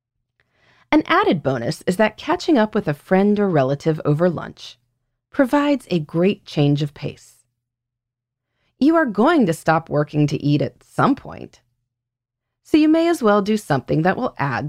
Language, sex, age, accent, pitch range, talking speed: English, female, 30-49, American, 120-200 Hz, 170 wpm